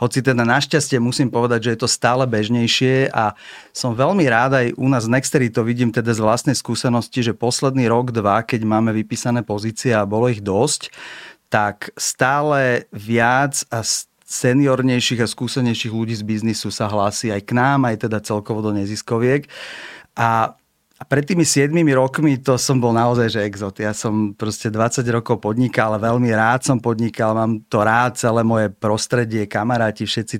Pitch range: 110-125 Hz